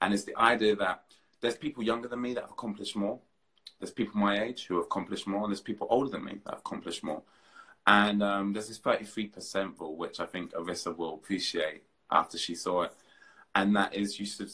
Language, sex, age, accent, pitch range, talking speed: English, male, 20-39, British, 95-110 Hz, 220 wpm